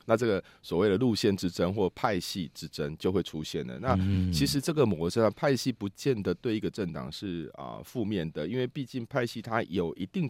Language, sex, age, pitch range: Chinese, male, 30-49, 85-115 Hz